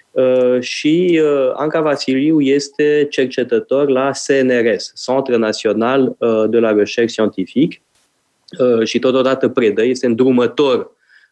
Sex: male